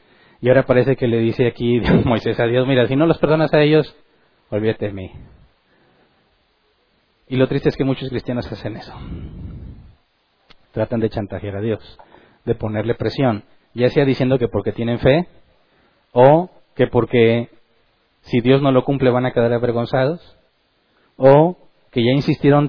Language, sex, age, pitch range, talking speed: Spanish, male, 30-49, 110-130 Hz, 160 wpm